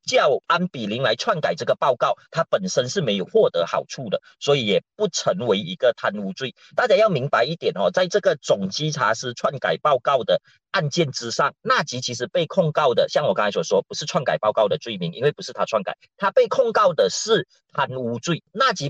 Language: Chinese